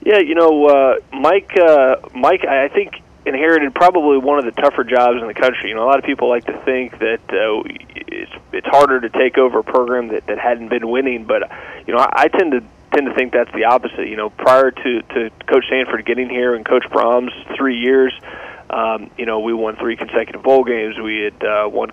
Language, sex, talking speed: English, male, 225 wpm